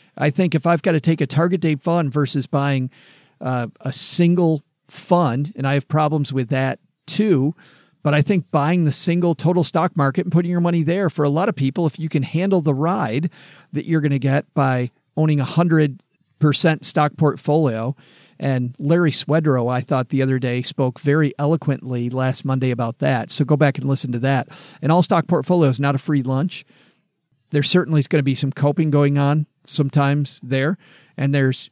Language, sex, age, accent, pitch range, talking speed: English, male, 40-59, American, 135-165 Hz, 195 wpm